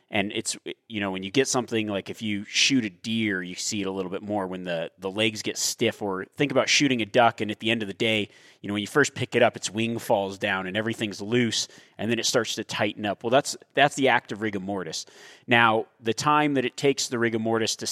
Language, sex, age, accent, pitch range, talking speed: English, male, 30-49, American, 105-130 Hz, 270 wpm